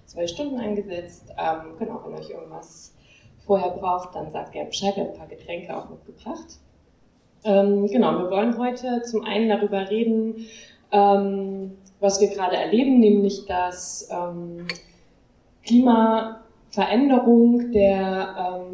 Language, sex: German, female